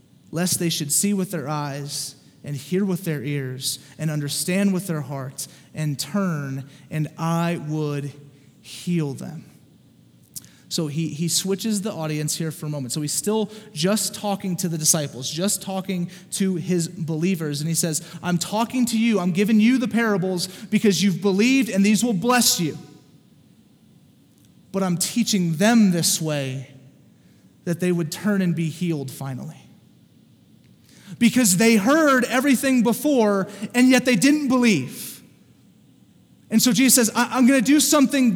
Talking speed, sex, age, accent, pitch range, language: 155 wpm, male, 30-49, American, 160-240 Hz, English